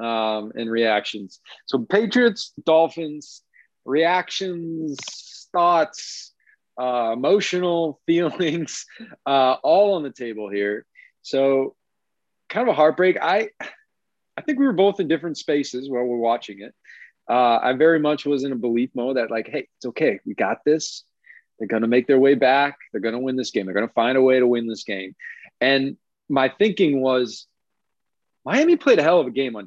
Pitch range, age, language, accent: 115-165 Hz, 30-49, English, American